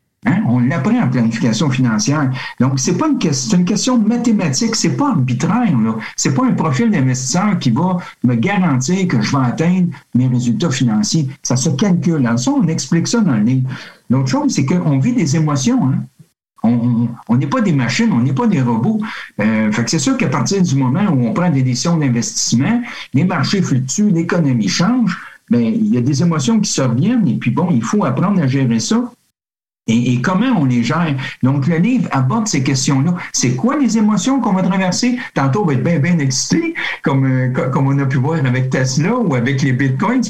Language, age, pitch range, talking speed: French, 60-79, 125-190 Hz, 205 wpm